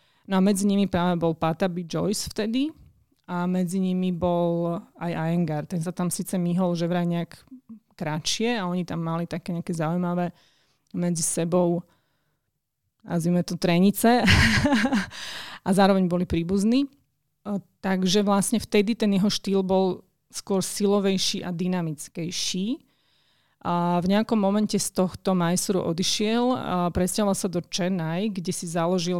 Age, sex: 30-49, female